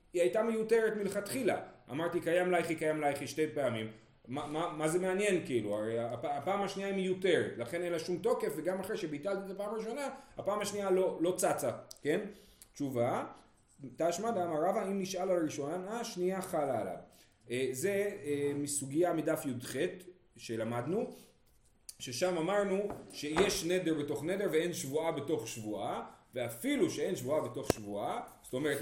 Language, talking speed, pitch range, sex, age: Hebrew, 155 wpm, 145-200 Hz, male, 40-59